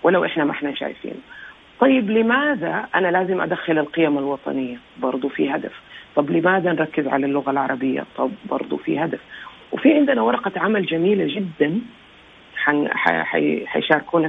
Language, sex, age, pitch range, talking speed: Arabic, female, 40-59, 155-230 Hz, 135 wpm